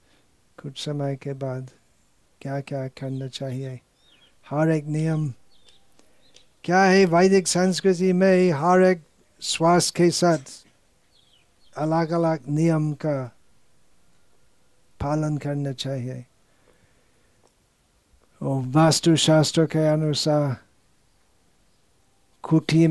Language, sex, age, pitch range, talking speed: Hindi, male, 60-79, 135-160 Hz, 90 wpm